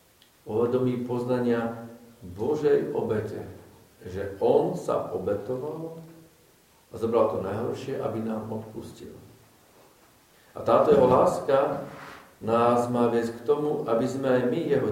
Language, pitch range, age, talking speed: Slovak, 105-130 Hz, 50-69, 120 wpm